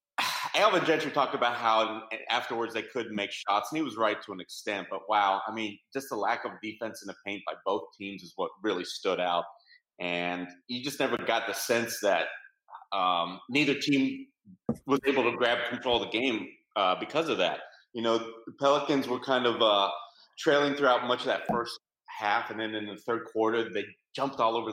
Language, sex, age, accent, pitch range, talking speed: English, male, 30-49, American, 100-120 Hz, 205 wpm